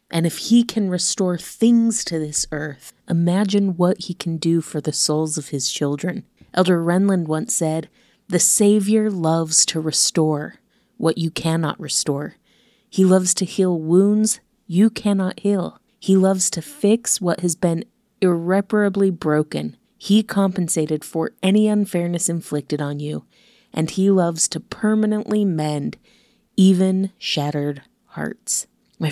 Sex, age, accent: female, 30-49, American